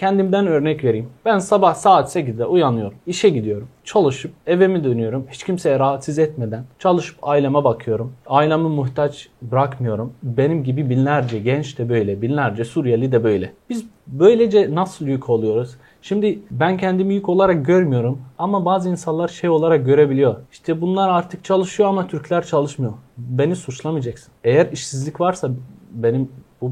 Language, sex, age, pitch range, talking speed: Turkish, male, 40-59, 130-180 Hz, 145 wpm